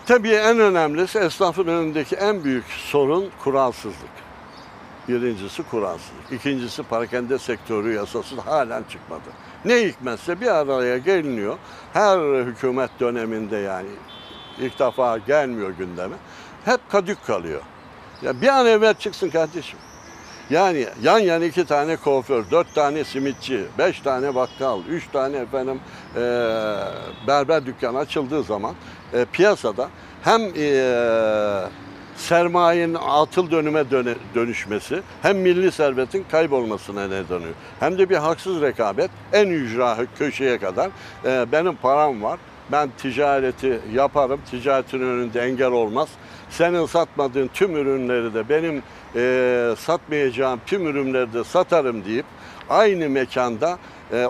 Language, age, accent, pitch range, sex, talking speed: Turkish, 60-79, native, 120-165 Hz, male, 125 wpm